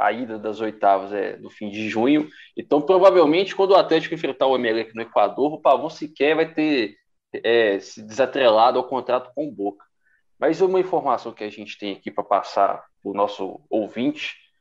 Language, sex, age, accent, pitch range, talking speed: Portuguese, male, 20-39, Brazilian, 110-135 Hz, 190 wpm